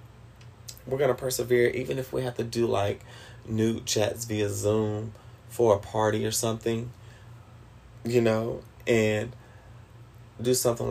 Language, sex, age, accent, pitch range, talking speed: English, male, 30-49, American, 105-120 Hz, 140 wpm